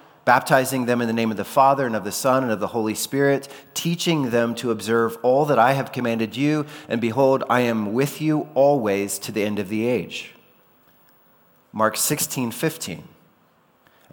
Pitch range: 110-140 Hz